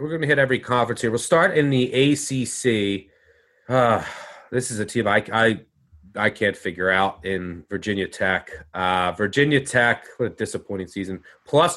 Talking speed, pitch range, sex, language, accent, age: 175 wpm, 100-145 Hz, male, English, American, 30-49